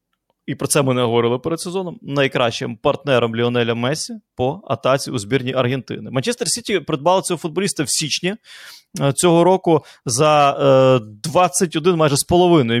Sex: male